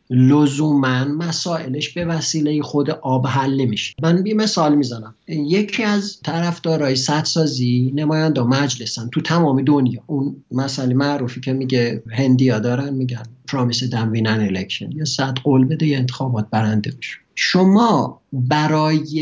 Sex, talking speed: male, 130 wpm